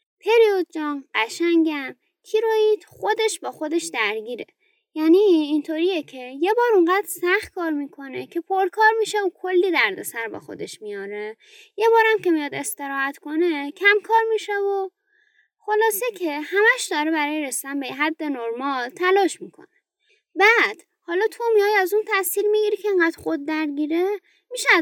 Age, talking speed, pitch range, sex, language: 20-39, 145 wpm, 285-410 Hz, female, Persian